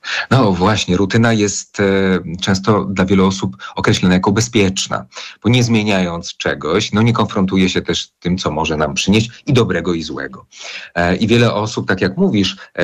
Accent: native